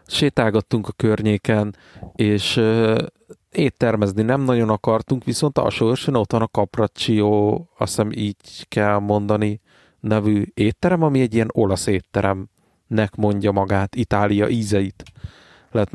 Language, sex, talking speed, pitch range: Hungarian, male, 125 wpm, 100-120 Hz